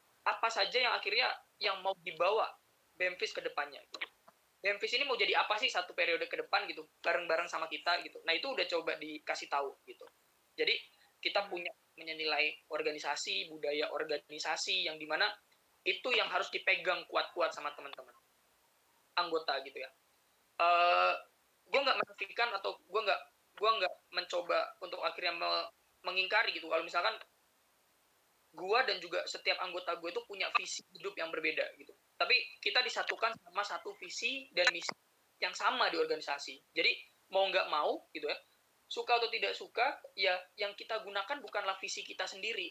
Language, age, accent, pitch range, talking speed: Indonesian, 20-39, native, 170-255 Hz, 155 wpm